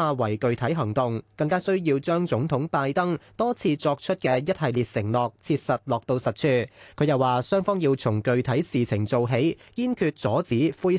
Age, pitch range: 20-39, 120-170 Hz